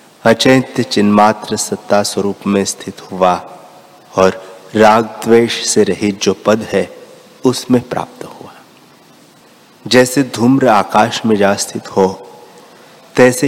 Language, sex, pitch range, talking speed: Hindi, male, 100-125 Hz, 115 wpm